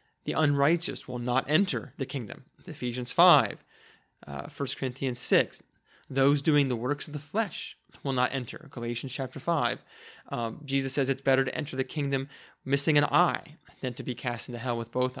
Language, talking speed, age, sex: English, 180 wpm, 20-39, male